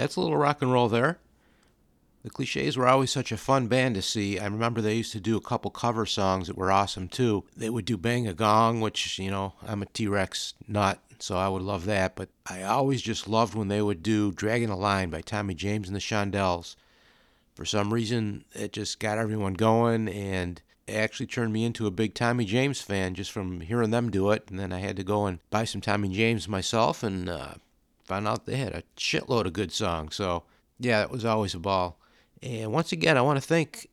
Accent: American